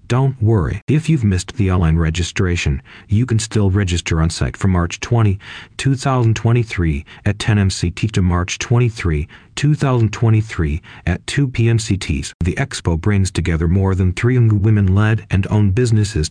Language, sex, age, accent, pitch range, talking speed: English, male, 40-59, American, 90-115 Hz, 145 wpm